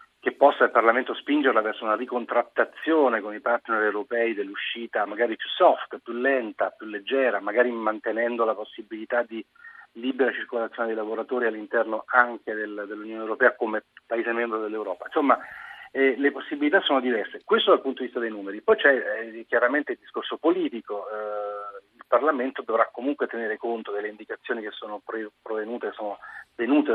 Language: Italian